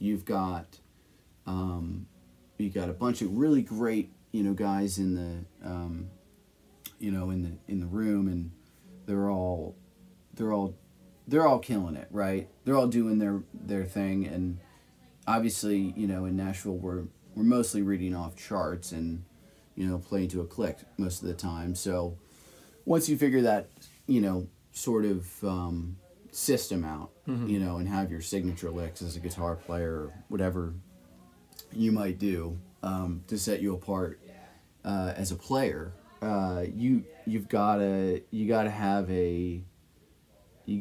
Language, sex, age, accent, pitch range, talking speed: English, male, 30-49, American, 90-100 Hz, 155 wpm